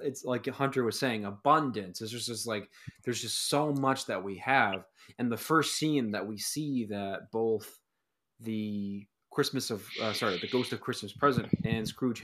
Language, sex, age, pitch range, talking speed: English, male, 20-39, 105-140 Hz, 180 wpm